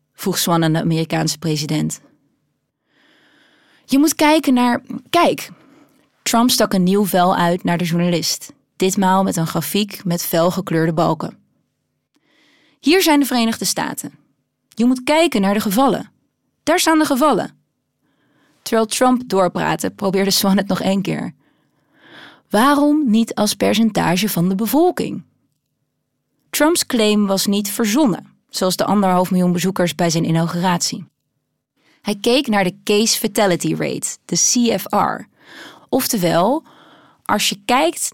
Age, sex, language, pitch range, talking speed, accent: 20-39, female, Dutch, 175-245 Hz, 130 wpm, Dutch